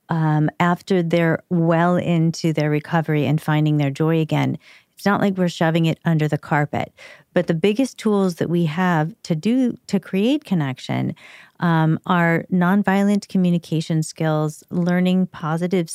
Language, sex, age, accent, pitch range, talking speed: English, female, 40-59, American, 160-200 Hz, 150 wpm